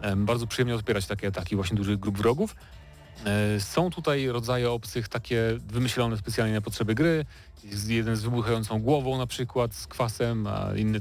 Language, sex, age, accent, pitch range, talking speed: Polish, male, 30-49, native, 105-140 Hz, 165 wpm